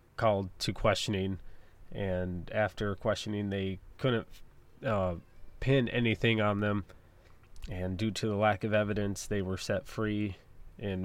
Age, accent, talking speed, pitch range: 20-39, American, 135 wpm, 95-110 Hz